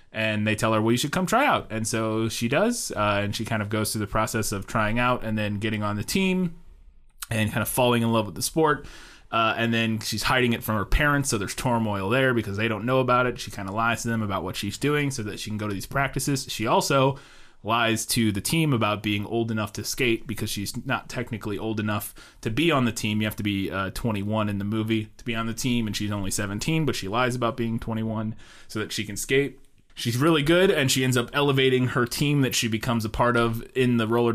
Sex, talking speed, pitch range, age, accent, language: male, 260 wpm, 105-125 Hz, 20-39, American, English